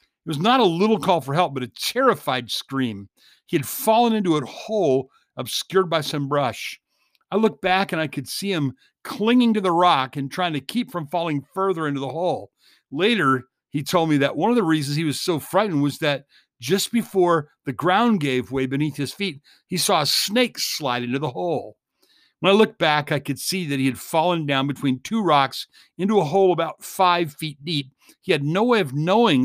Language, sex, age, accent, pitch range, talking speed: English, male, 50-69, American, 135-185 Hz, 210 wpm